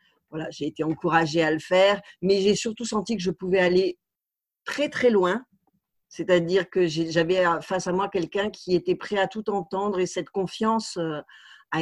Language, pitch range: French, 175-220 Hz